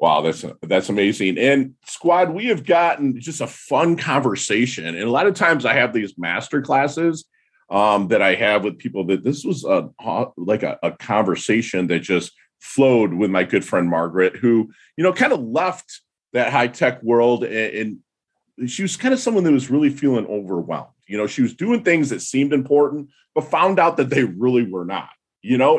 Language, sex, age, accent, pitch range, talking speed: English, male, 40-59, American, 105-145 Hz, 200 wpm